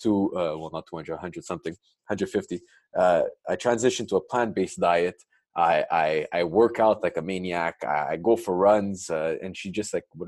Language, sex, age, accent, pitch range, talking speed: English, male, 20-39, Canadian, 95-120 Hz, 205 wpm